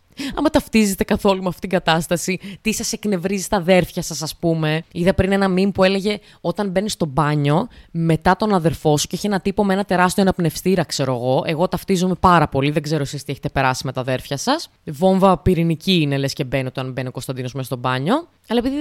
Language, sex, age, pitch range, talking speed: Greek, female, 20-39, 145-195 Hz, 215 wpm